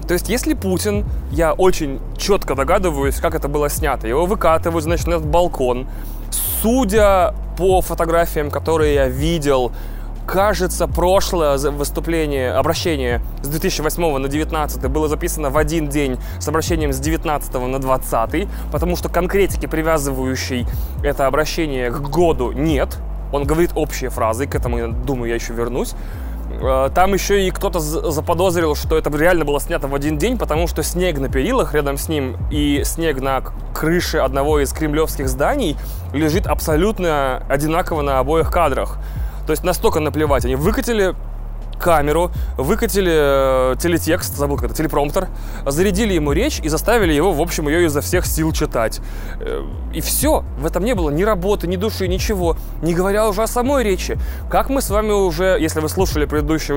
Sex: male